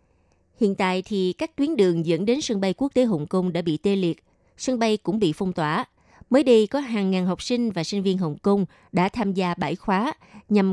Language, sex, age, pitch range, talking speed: Vietnamese, female, 20-39, 175-220 Hz, 235 wpm